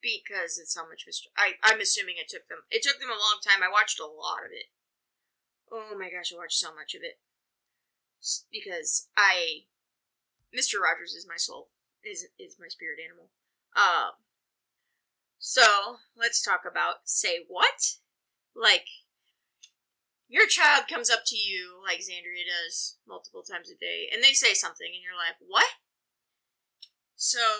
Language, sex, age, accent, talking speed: English, female, 20-39, American, 165 wpm